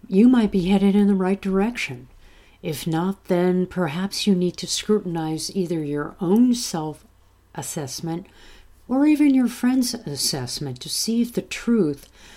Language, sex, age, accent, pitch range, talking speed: English, female, 50-69, American, 130-200 Hz, 145 wpm